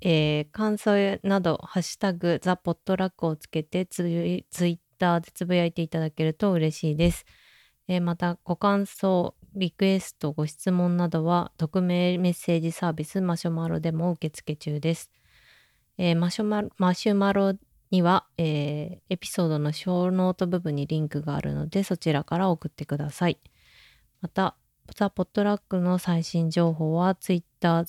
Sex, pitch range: female, 160-185 Hz